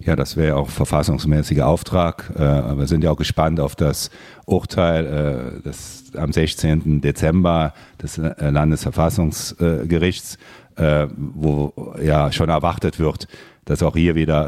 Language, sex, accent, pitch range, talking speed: German, male, German, 75-100 Hz, 120 wpm